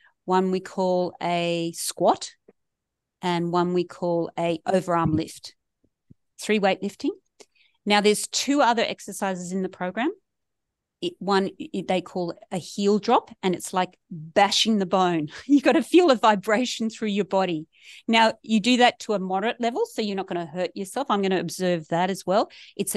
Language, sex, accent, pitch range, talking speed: English, female, Australian, 180-220 Hz, 175 wpm